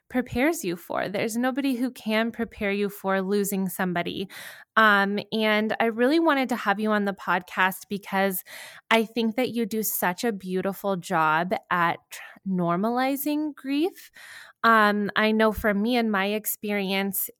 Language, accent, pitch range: English, American, 190-225 Hz